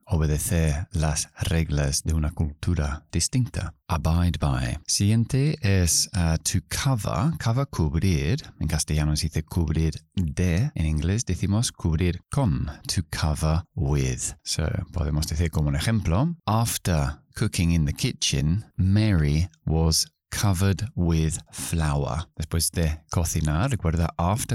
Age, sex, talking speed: 30-49, male, 125 wpm